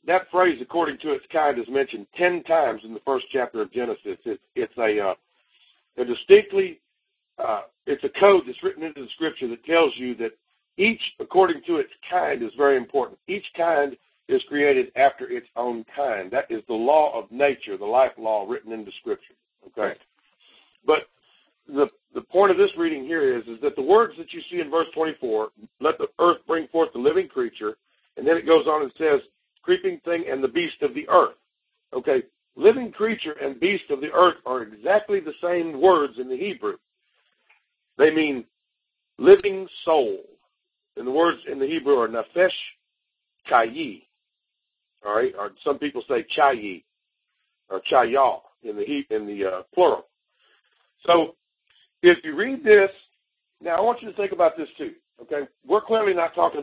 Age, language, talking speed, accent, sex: 60-79, English, 180 wpm, American, male